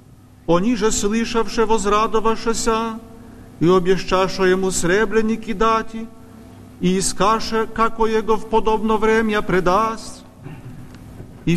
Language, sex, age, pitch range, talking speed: Polish, male, 40-59, 190-225 Hz, 105 wpm